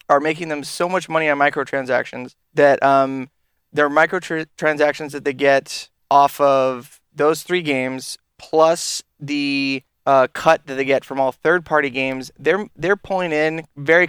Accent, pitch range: American, 130-150 Hz